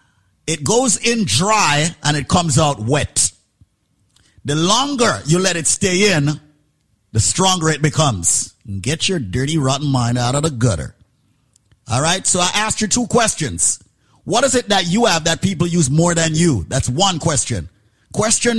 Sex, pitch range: male, 130-195 Hz